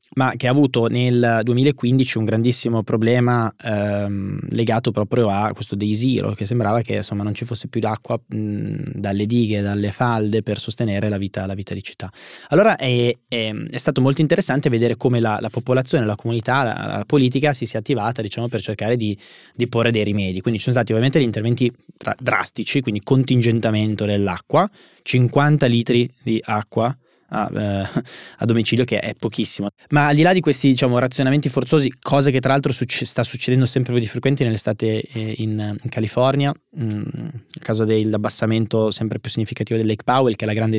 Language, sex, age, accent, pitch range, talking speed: Italian, male, 20-39, native, 110-130 Hz, 185 wpm